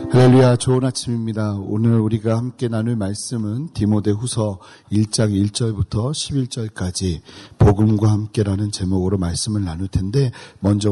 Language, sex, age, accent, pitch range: Korean, male, 40-59, native, 105-125 Hz